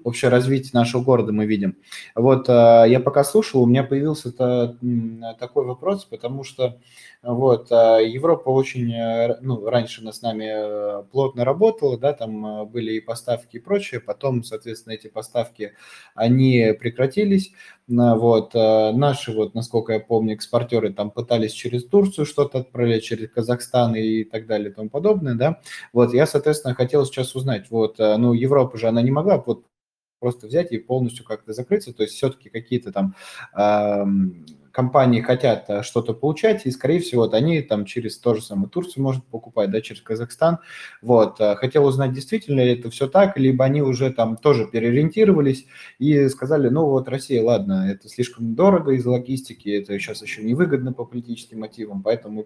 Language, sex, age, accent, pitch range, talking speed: Russian, male, 20-39, native, 110-135 Hz, 160 wpm